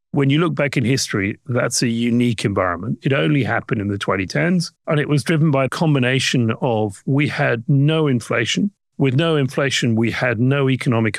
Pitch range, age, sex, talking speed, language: 115-150 Hz, 40-59, male, 190 wpm, English